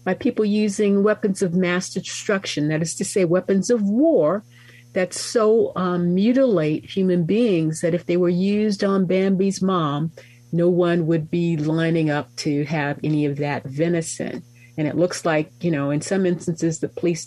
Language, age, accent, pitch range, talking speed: English, 50-69, American, 130-175 Hz, 175 wpm